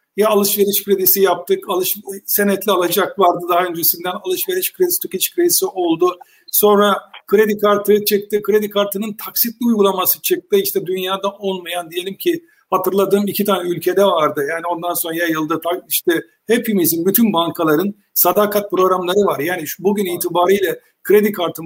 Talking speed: 135 wpm